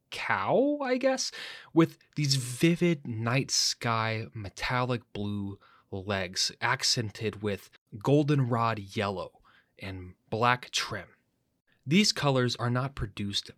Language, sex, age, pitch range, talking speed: English, male, 20-39, 105-145 Hz, 100 wpm